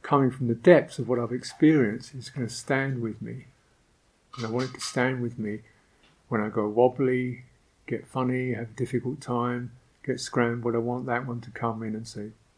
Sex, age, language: male, 50-69, English